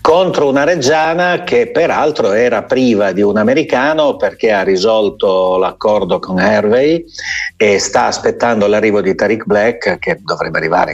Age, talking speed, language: 50-69, 145 wpm, Italian